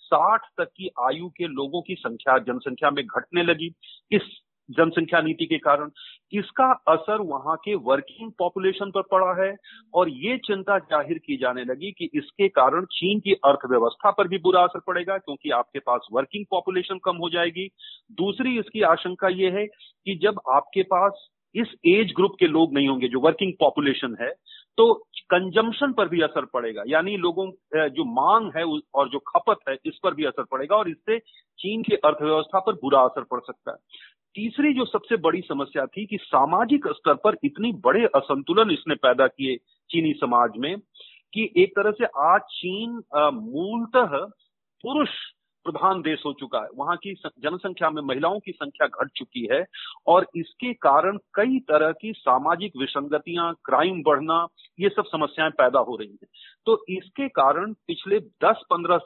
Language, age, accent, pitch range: Hindi, 40-59, native, 155-215 Hz